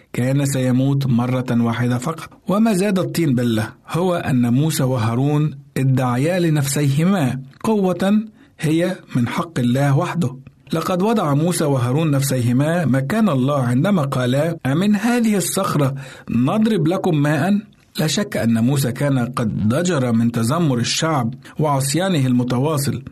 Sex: male